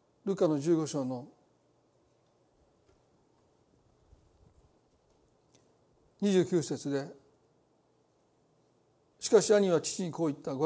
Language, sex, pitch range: Japanese, male, 150-190 Hz